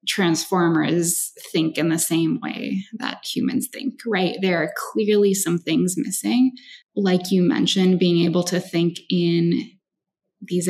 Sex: female